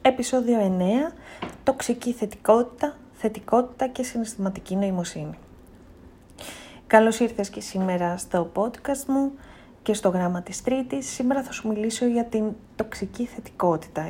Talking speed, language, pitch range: 120 wpm, Greek, 180-240 Hz